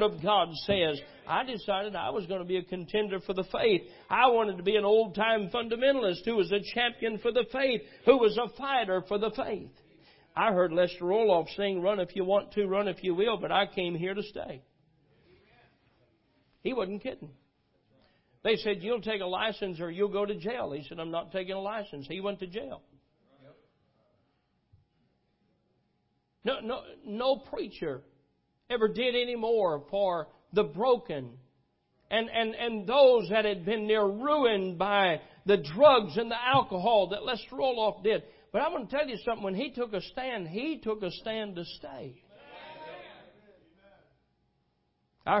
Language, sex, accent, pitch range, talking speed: English, male, American, 190-235 Hz, 175 wpm